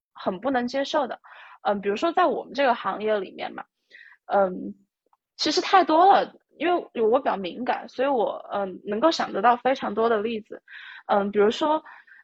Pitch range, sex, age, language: 205-275 Hz, female, 20-39, Chinese